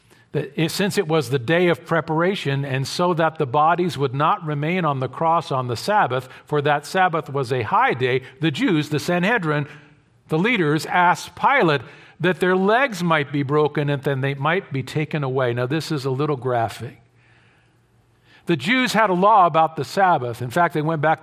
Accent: American